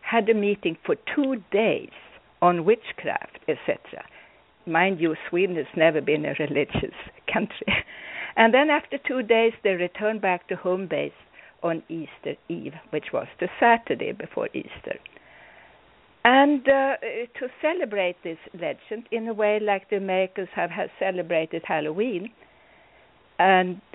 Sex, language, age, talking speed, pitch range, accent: female, English, 60-79, 140 wpm, 175-250 Hz, Swedish